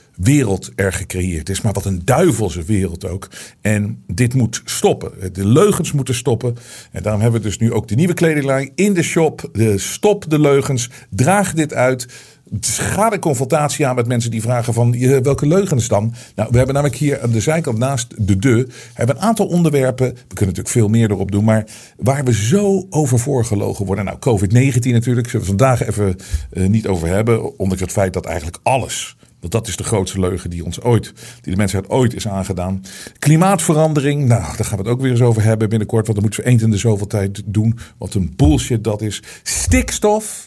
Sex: male